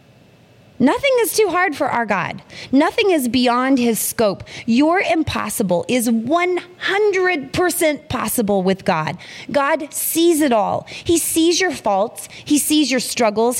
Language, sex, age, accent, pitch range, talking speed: English, female, 30-49, American, 190-290 Hz, 135 wpm